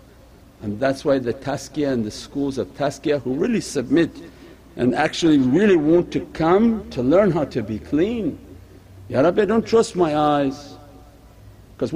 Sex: male